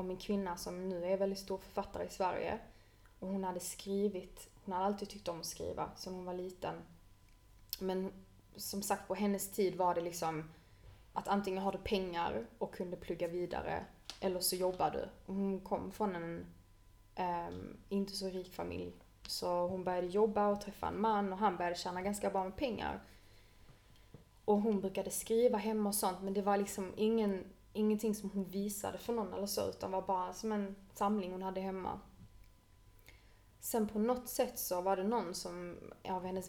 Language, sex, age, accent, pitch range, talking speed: Swedish, female, 20-39, native, 175-200 Hz, 185 wpm